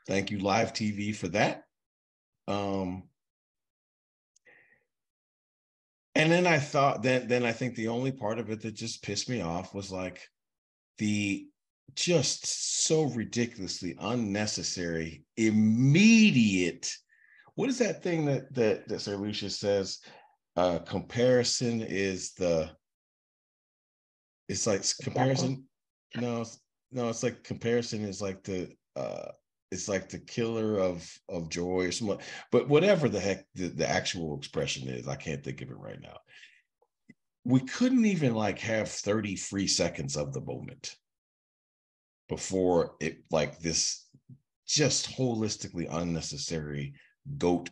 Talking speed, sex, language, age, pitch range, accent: 130 wpm, male, English, 30-49, 85-120 Hz, American